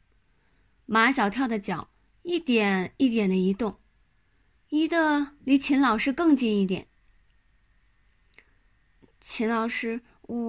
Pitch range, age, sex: 195-270 Hz, 20-39, female